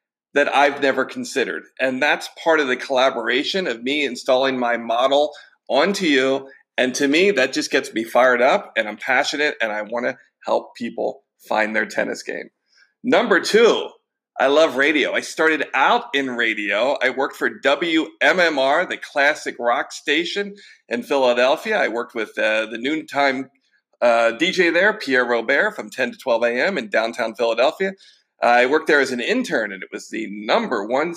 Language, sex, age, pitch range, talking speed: English, male, 40-59, 125-170 Hz, 170 wpm